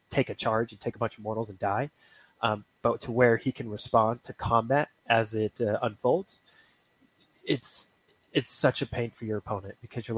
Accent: American